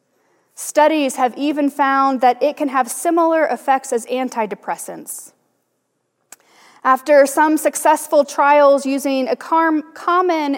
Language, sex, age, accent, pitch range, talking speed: English, female, 30-49, American, 240-295 Hz, 110 wpm